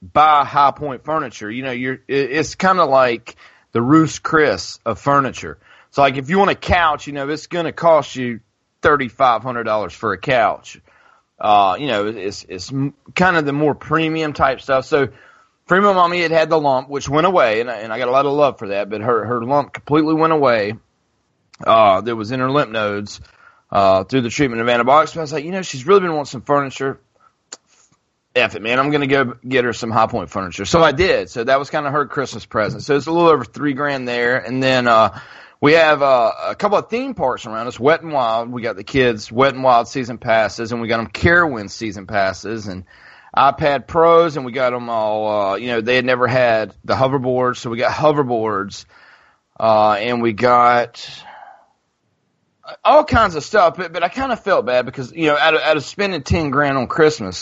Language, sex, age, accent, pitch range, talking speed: English, male, 30-49, American, 115-155 Hz, 220 wpm